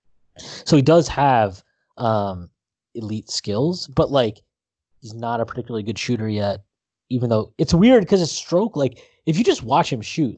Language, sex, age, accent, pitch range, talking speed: English, male, 20-39, American, 105-140 Hz, 175 wpm